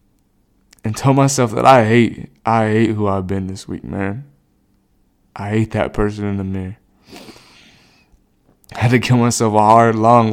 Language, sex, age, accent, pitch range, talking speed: English, male, 20-39, American, 110-150 Hz, 170 wpm